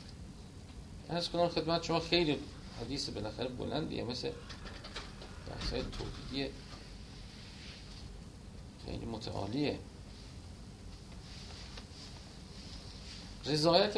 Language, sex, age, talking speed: Persian, male, 40-59, 60 wpm